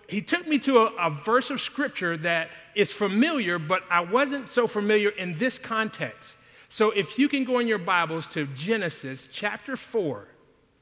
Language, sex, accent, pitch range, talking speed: English, male, American, 160-235 Hz, 175 wpm